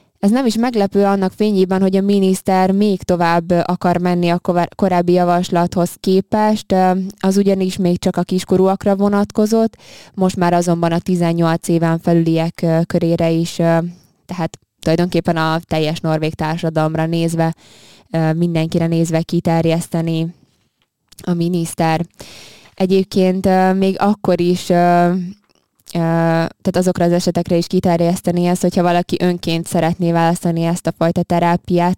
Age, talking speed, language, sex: 20-39, 120 wpm, Hungarian, female